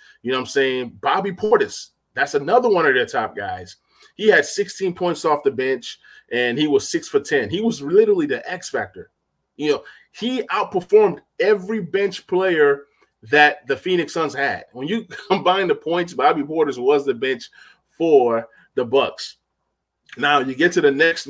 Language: English